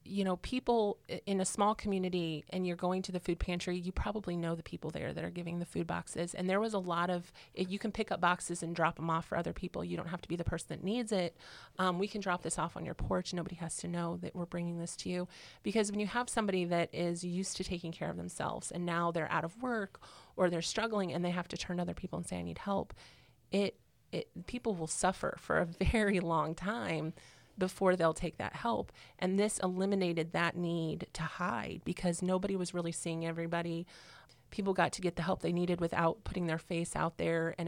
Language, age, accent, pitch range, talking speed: English, 30-49, American, 170-190 Hz, 240 wpm